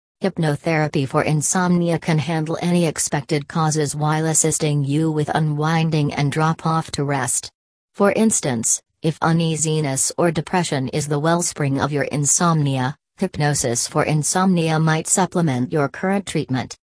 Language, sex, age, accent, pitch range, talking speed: English, female, 40-59, American, 145-170 Hz, 135 wpm